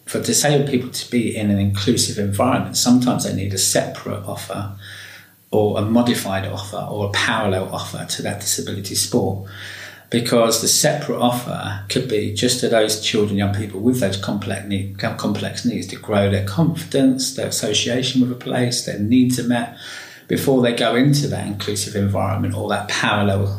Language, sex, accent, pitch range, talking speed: English, male, British, 100-125 Hz, 170 wpm